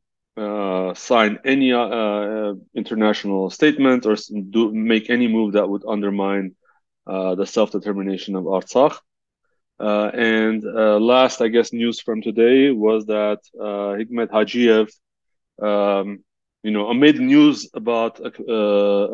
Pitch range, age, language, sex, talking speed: 100-115 Hz, 20-39, English, male, 130 wpm